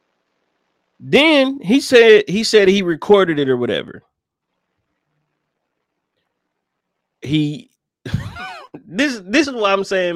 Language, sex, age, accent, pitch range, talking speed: English, male, 30-49, American, 130-215 Hz, 100 wpm